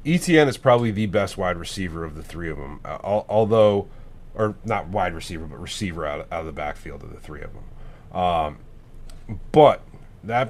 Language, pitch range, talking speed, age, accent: English, 90-120 Hz, 195 wpm, 30-49, American